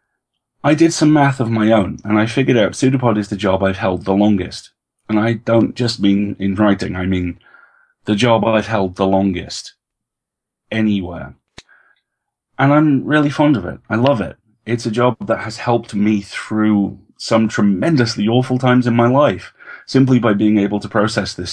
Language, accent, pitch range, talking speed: English, British, 95-120 Hz, 185 wpm